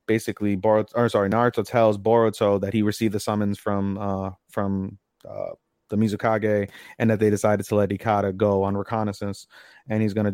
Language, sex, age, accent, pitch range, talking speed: English, male, 20-39, American, 100-120 Hz, 185 wpm